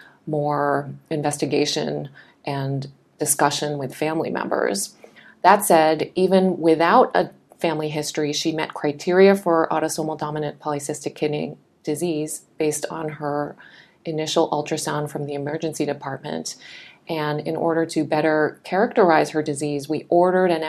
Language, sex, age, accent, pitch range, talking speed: English, female, 30-49, American, 145-165 Hz, 125 wpm